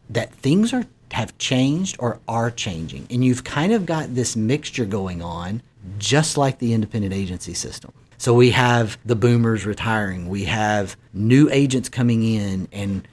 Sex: male